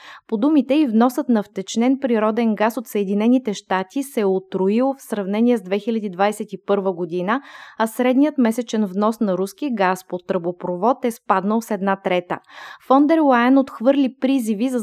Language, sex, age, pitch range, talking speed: Bulgarian, female, 20-39, 200-255 Hz, 150 wpm